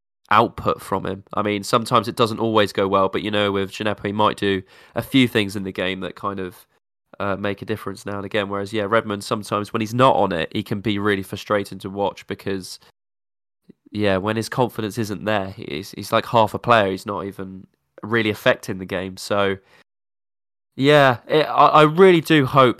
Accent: British